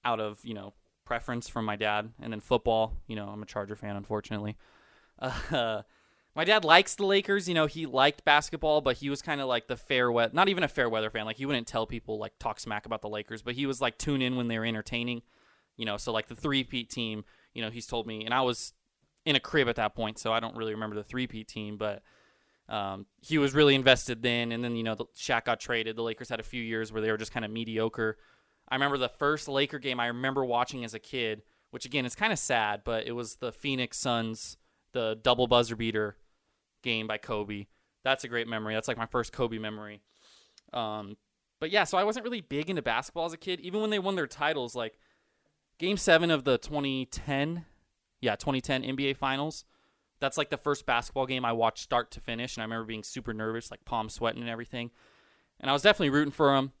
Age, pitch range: 20-39, 110-140 Hz